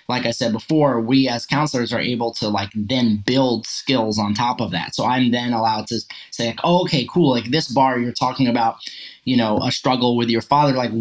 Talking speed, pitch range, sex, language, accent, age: 230 wpm, 115-135 Hz, male, English, American, 20-39